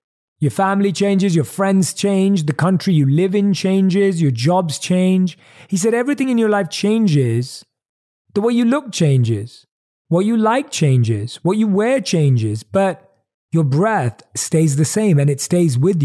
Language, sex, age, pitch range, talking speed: English, male, 30-49, 145-200 Hz, 170 wpm